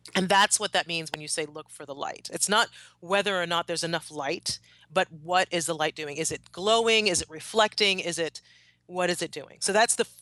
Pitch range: 160-200 Hz